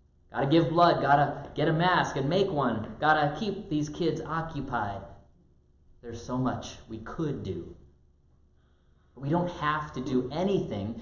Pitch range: 105-160 Hz